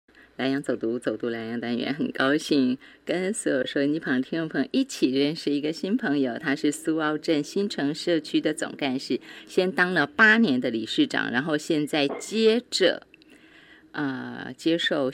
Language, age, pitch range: Chinese, 30-49, 125-160 Hz